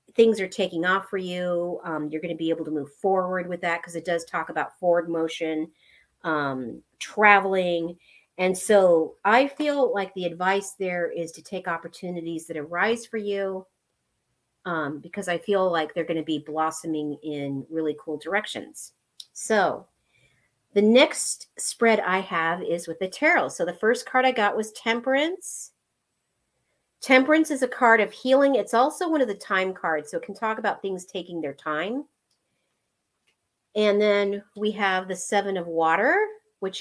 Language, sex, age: English, female, 40-59